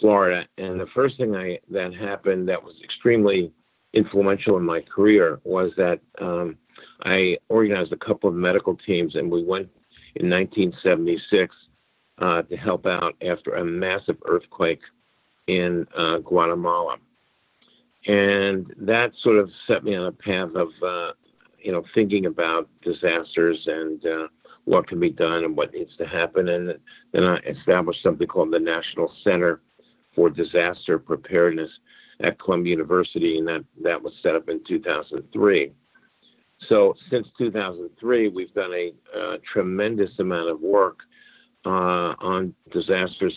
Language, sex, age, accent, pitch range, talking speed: English, male, 50-69, American, 85-110 Hz, 145 wpm